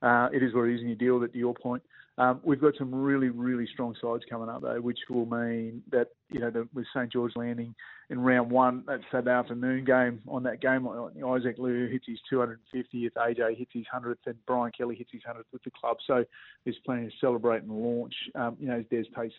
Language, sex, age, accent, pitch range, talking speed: English, male, 30-49, Australian, 115-130 Hz, 240 wpm